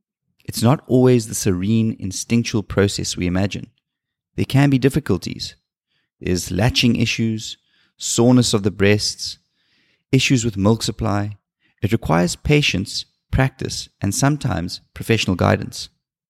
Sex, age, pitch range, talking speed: male, 30-49, 100-125 Hz, 120 wpm